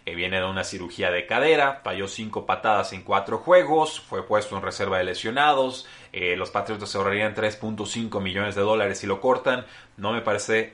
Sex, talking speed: male, 185 wpm